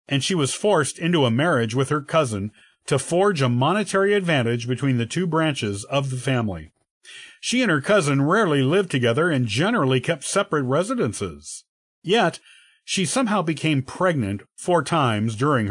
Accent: American